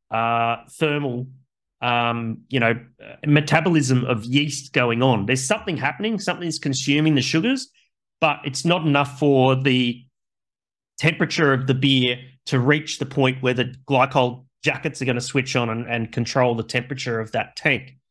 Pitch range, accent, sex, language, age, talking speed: 125-155 Hz, Australian, male, English, 30-49, 160 wpm